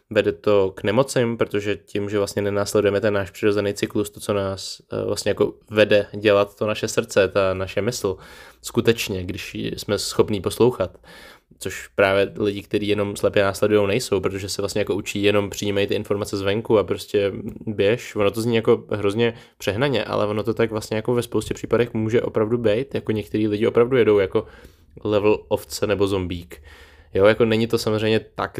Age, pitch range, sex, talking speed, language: 20-39, 100-110 Hz, male, 180 wpm, Czech